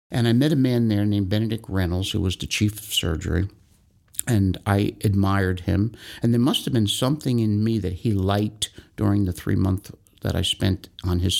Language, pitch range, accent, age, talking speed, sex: English, 95-110 Hz, American, 60-79, 205 wpm, male